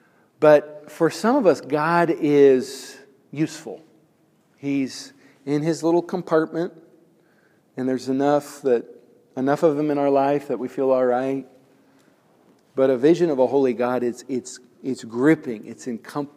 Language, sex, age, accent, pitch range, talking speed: English, male, 50-69, American, 125-155 Hz, 150 wpm